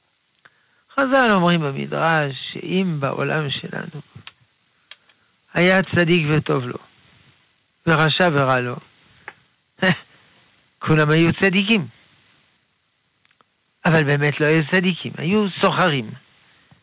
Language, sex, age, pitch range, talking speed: Hebrew, male, 60-79, 140-175 Hz, 80 wpm